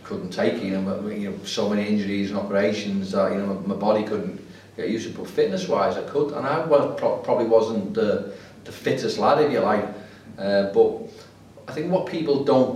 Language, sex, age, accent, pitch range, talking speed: English, male, 40-59, British, 100-115 Hz, 215 wpm